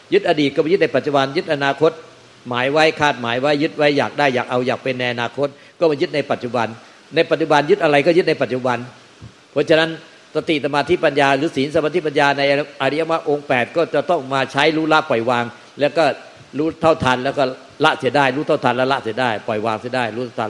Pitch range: 125-155 Hz